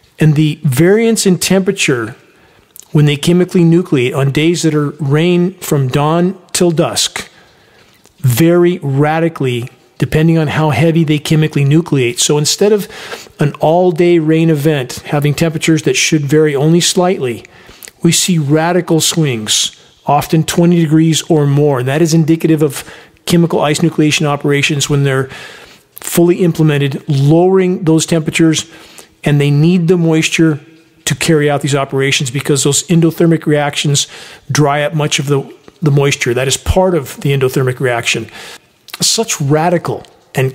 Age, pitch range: 40-59, 145-175 Hz